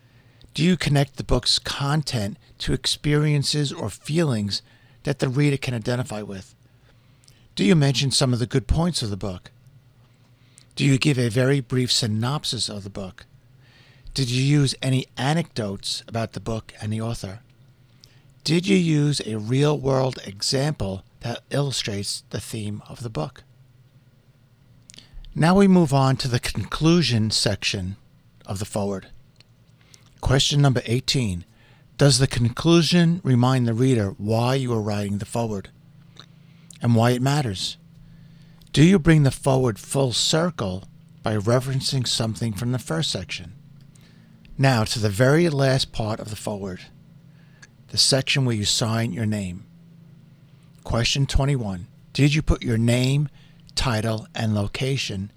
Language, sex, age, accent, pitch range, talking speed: English, male, 50-69, American, 115-145 Hz, 140 wpm